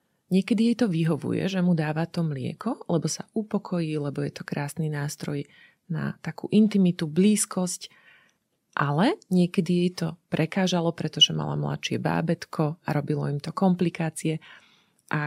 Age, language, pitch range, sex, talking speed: 30-49, Slovak, 155-185 Hz, female, 140 wpm